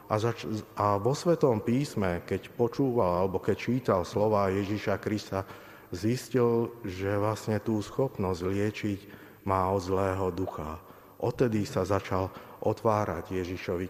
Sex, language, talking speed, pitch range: male, Slovak, 115 wpm, 95-110 Hz